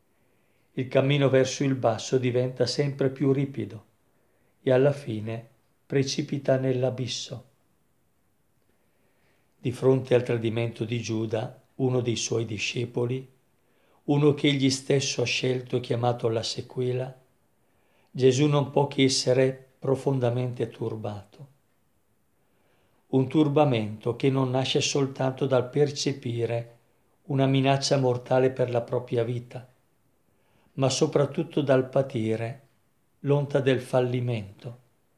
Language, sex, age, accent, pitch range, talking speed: Italian, male, 50-69, native, 120-135 Hz, 105 wpm